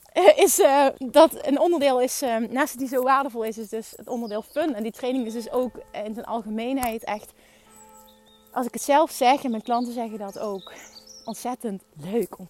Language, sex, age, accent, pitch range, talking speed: Dutch, female, 30-49, Dutch, 210-270 Hz, 200 wpm